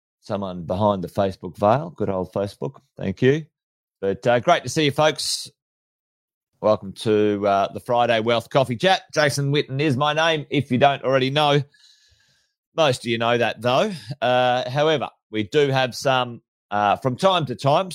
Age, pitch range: 30-49, 110-150 Hz